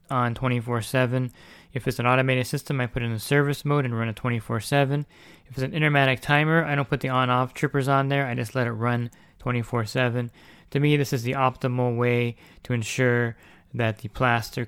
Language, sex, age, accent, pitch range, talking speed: English, male, 20-39, American, 115-130 Hz, 200 wpm